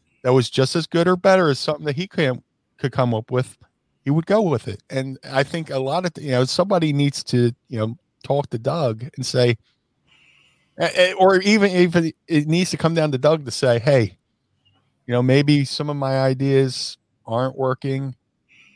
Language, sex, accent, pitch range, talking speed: English, male, American, 125-150 Hz, 195 wpm